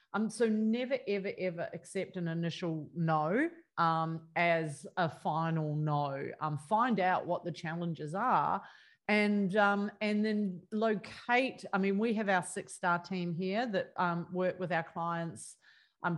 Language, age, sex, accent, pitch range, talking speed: English, 40-59, female, Australian, 170-210 Hz, 155 wpm